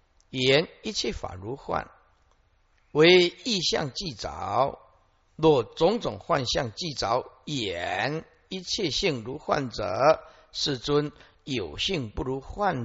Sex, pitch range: male, 95-155 Hz